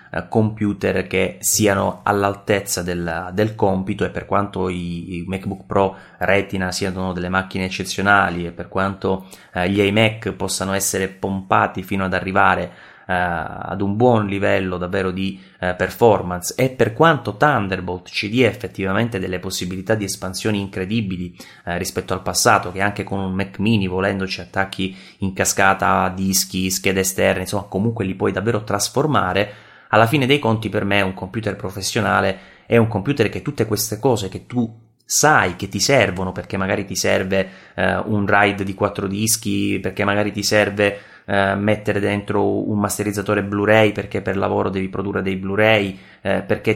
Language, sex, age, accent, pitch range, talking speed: Italian, male, 20-39, native, 95-105 Hz, 160 wpm